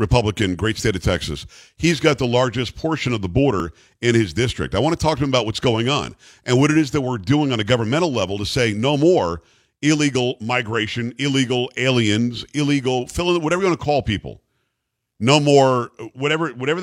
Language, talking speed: English, 205 wpm